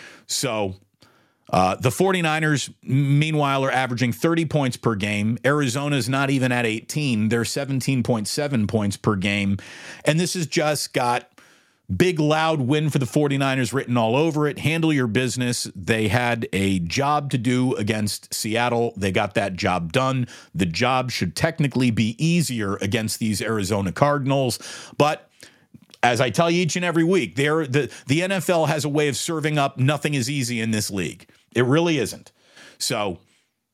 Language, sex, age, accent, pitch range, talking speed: English, male, 40-59, American, 105-145 Hz, 160 wpm